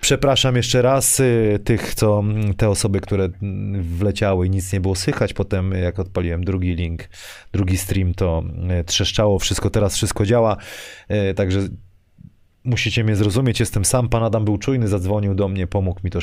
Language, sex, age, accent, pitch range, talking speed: Polish, male, 30-49, native, 95-115 Hz, 160 wpm